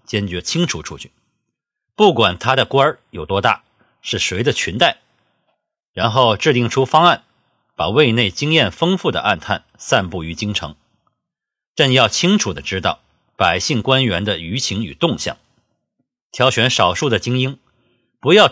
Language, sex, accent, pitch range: Chinese, male, native, 110-135 Hz